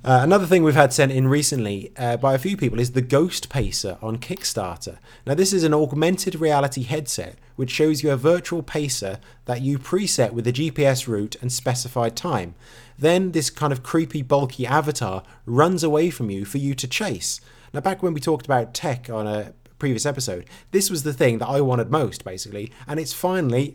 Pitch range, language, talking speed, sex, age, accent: 115-150 Hz, English, 200 wpm, male, 30-49, British